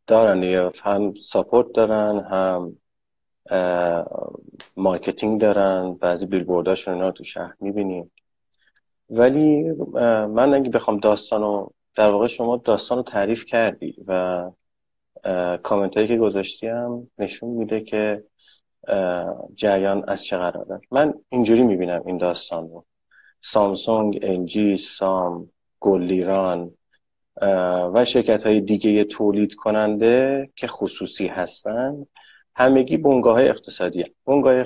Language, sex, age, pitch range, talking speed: Persian, male, 30-49, 95-110 Hz, 110 wpm